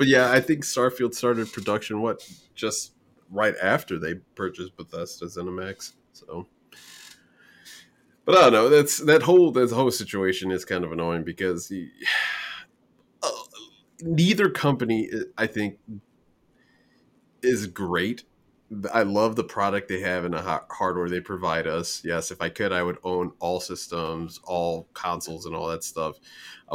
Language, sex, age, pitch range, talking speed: English, male, 30-49, 90-115 Hz, 155 wpm